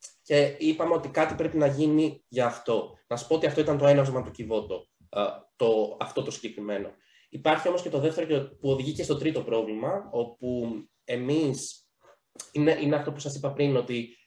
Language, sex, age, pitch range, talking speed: Greek, male, 20-39, 120-155 Hz, 185 wpm